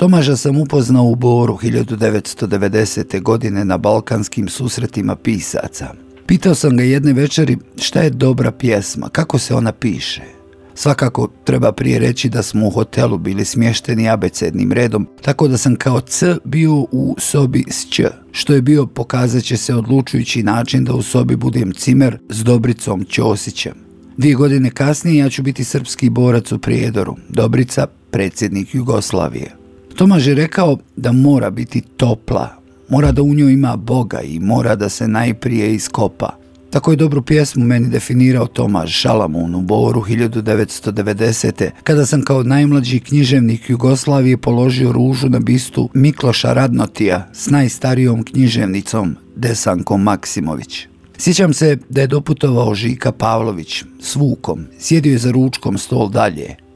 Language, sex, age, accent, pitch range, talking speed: Croatian, male, 50-69, native, 110-140 Hz, 145 wpm